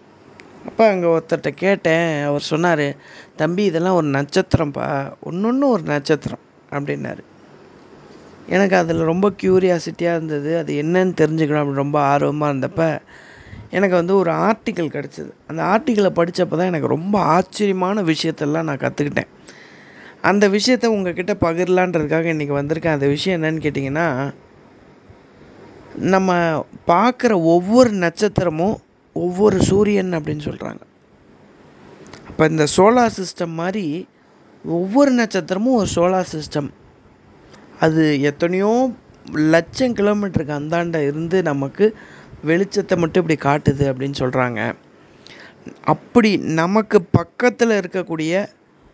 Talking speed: 110 wpm